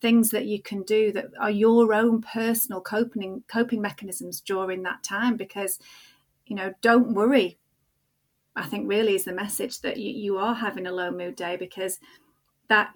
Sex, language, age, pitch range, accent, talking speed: female, English, 30-49, 210-245 Hz, British, 175 wpm